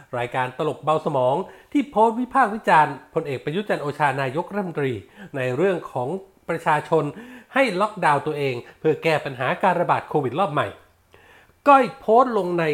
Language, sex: Thai, male